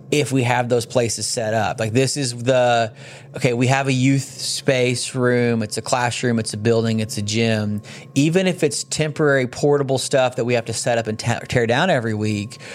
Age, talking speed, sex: 30-49, 205 wpm, male